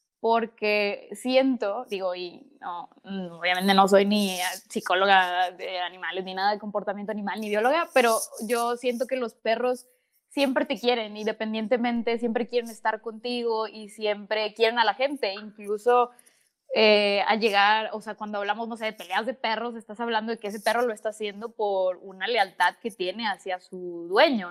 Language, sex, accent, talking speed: Spanish, female, Mexican, 170 wpm